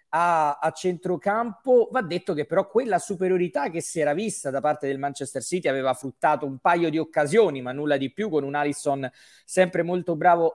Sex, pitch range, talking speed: male, 145-180 Hz, 190 wpm